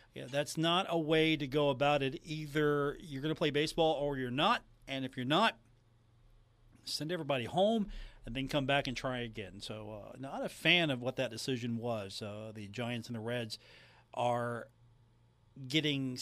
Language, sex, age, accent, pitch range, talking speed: English, male, 40-59, American, 115-150 Hz, 185 wpm